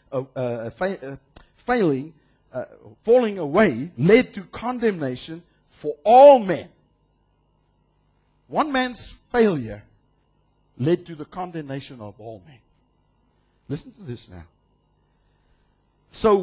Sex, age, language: male, 60-79, English